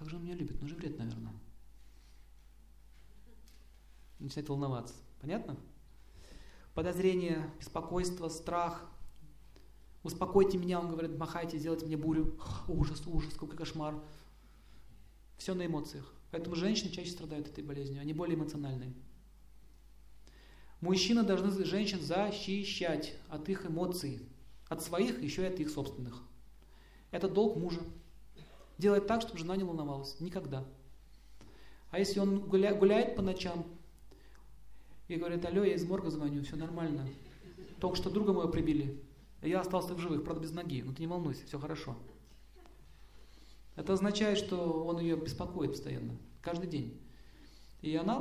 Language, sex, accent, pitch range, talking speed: Russian, male, native, 140-180 Hz, 135 wpm